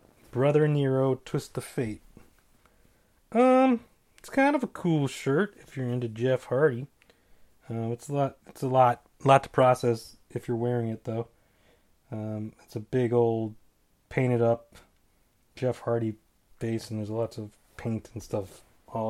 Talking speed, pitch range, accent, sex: 155 wpm, 115-155 Hz, American, male